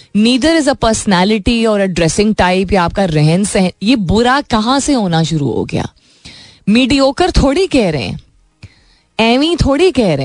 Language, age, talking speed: Hindi, 20-39, 170 wpm